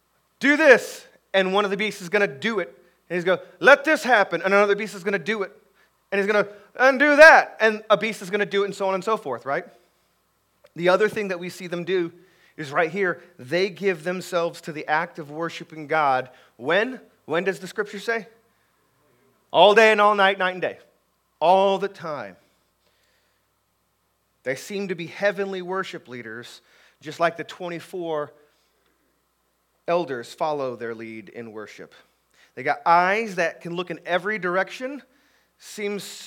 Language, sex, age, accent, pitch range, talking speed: English, male, 30-49, American, 160-210 Hz, 185 wpm